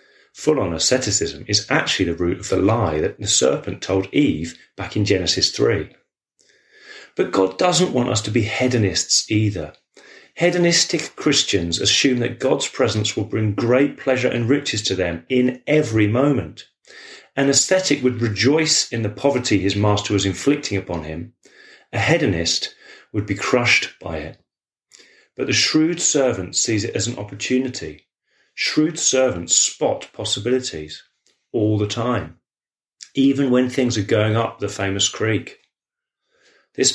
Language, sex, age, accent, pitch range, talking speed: English, male, 30-49, British, 100-135 Hz, 145 wpm